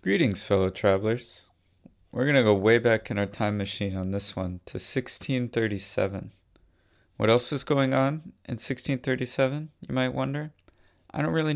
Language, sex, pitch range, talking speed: English, male, 95-120 Hz, 160 wpm